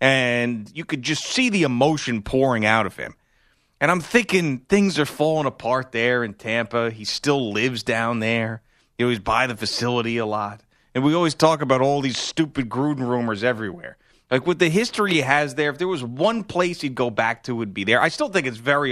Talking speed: 220 wpm